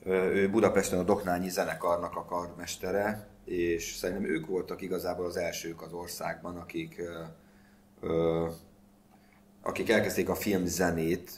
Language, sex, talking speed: Hungarian, male, 110 wpm